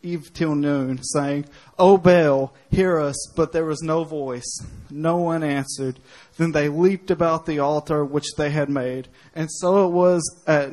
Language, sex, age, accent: English, male, 30-49, American